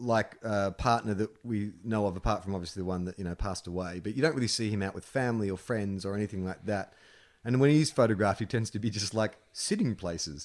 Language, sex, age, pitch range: English, male, 30-49, 95-125 Hz